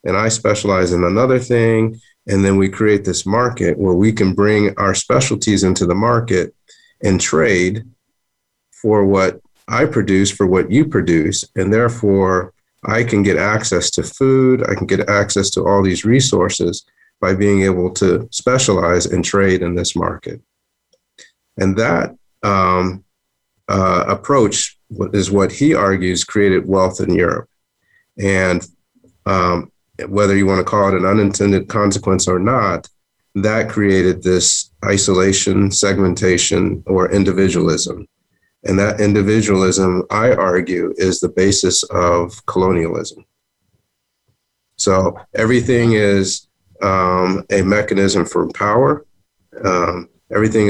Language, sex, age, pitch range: English, male, 40-59, 90-105 Hz